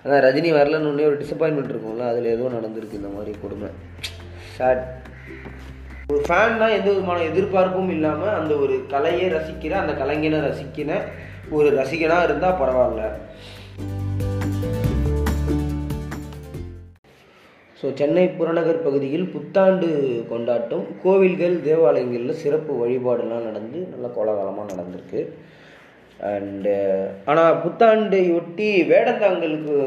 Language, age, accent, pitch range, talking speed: Tamil, 20-39, native, 105-155 Hz, 90 wpm